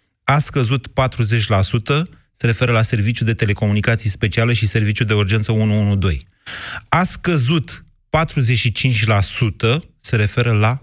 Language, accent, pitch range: Romanian, native, 105-125 Hz